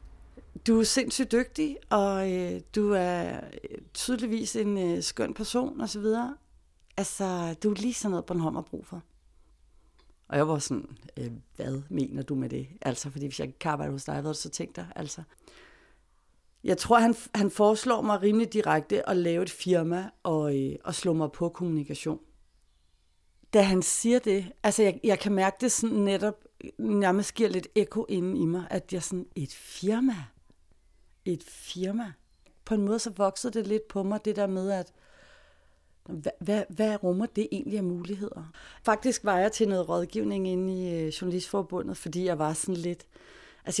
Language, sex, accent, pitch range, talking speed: Danish, female, native, 165-210 Hz, 180 wpm